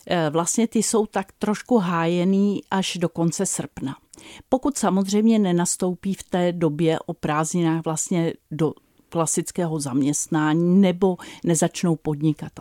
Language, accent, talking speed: Czech, native, 120 wpm